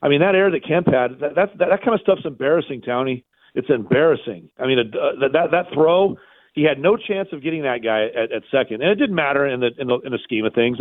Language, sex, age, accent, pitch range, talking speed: English, male, 40-59, American, 155-210 Hz, 270 wpm